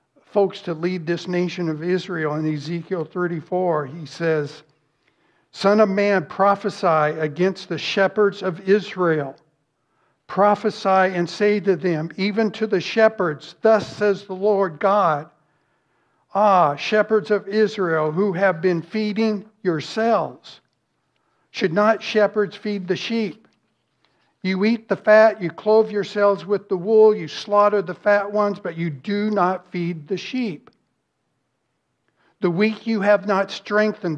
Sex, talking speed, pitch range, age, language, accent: male, 135 wpm, 165-205 Hz, 60-79, English, American